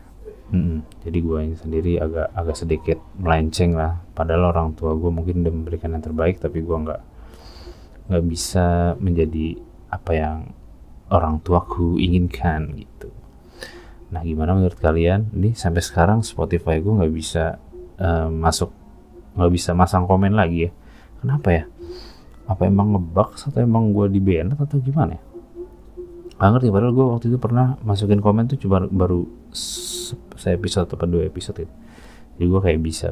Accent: native